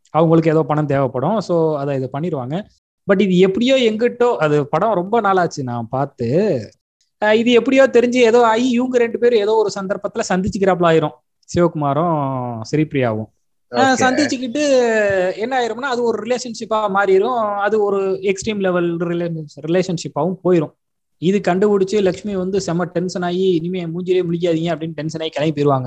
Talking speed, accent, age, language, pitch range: 135 wpm, native, 20-39, Tamil, 145-190 Hz